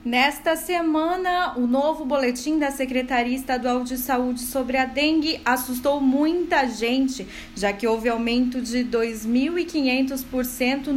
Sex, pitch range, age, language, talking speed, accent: female, 255-320 Hz, 20-39, Portuguese, 120 wpm, Brazilian